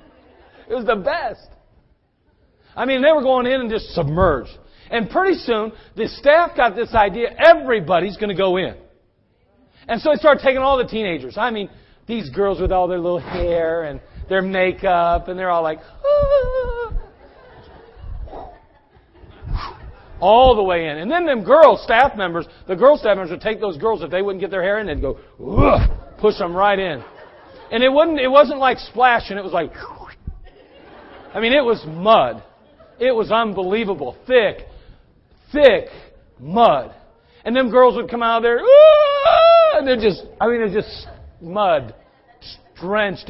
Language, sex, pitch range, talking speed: English, male, 195-255 Hz, 165 wpm